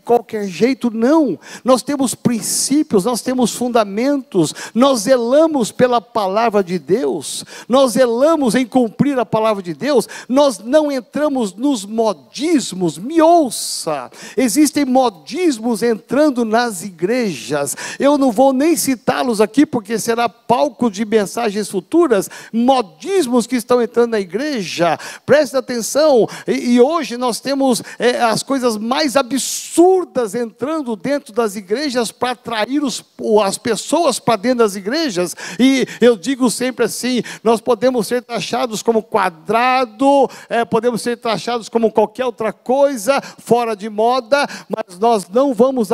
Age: 50-69